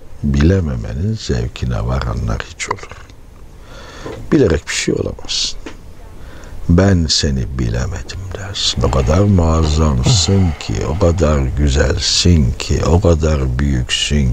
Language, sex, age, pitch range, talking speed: Turkish, male, 60-79, 75-100 Hz, 100 wpm